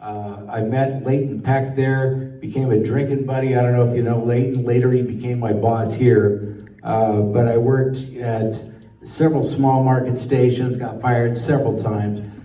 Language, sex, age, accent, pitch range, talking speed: English, male, 50-69, American, 115-140 Hz, 175 wpm